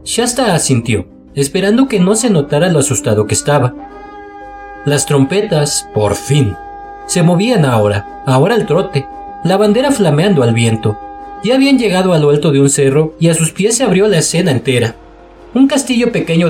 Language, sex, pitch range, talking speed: Spanish, male, 135-200 Hz, 170 wpm